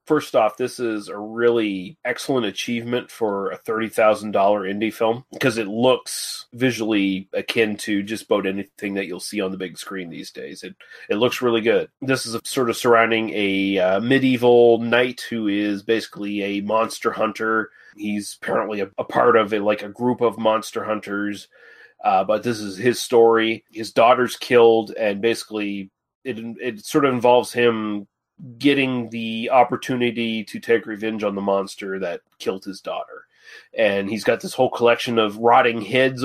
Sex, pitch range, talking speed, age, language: male, 105-125 Hz, 170 wpm, 30-49, English